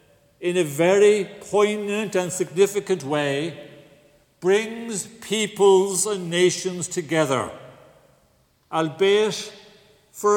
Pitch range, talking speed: 165-200 Hz, 80 wpm